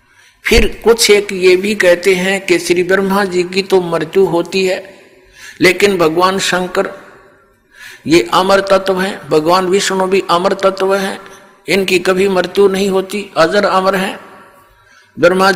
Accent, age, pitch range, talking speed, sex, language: native, 60-79, 150-190 Hz, 145 wpm, male, Hindi